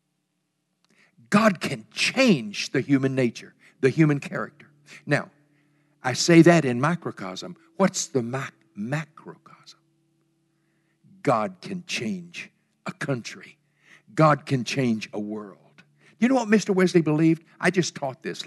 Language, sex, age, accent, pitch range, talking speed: English, male, 60-79, American, 120-180 Hz, 125 wpm